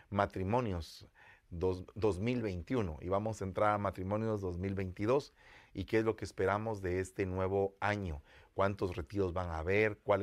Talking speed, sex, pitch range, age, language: 145 wpm, male, 95-110 Hz, 40-59, English